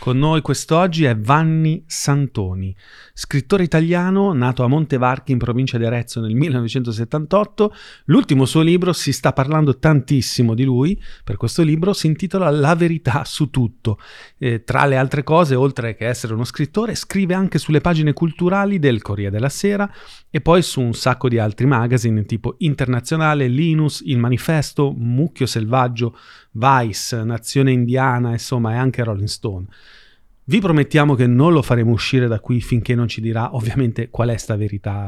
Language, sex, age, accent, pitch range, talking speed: Italian, male, 30-49, native, 120-160 Hz, 160 wpm